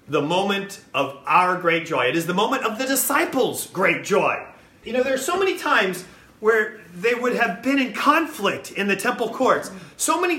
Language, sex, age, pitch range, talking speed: English, male, 30-49, 170-260 Hz, 200 wpm